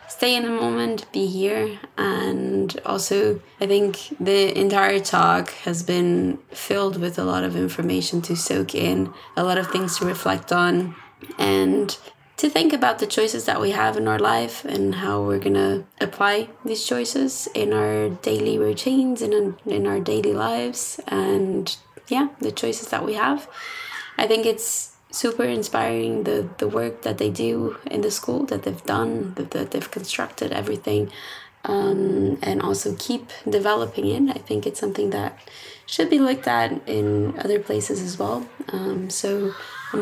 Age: 20-39